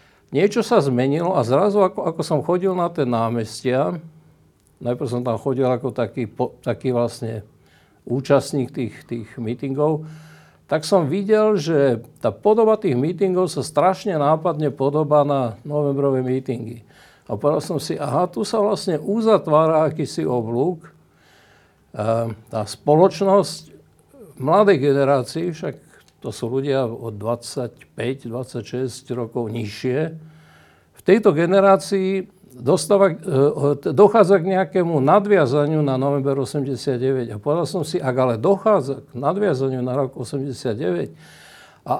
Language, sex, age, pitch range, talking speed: Slovak, male, 60-79, 130-180 Hz, 125 wpm